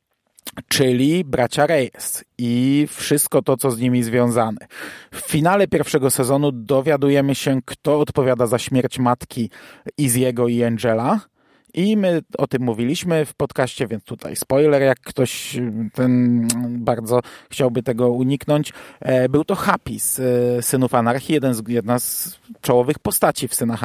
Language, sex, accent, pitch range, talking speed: Polish, male, native, 125-165 Hz, 135 wpm